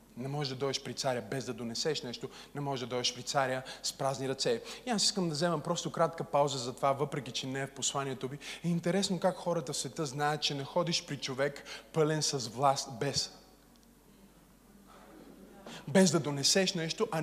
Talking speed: 200 wpm